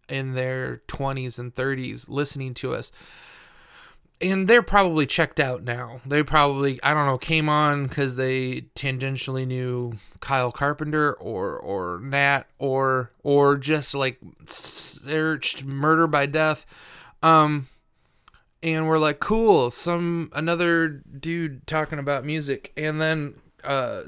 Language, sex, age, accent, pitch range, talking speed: English, male, 20-39, American, 130-155 Hz, 130 wpm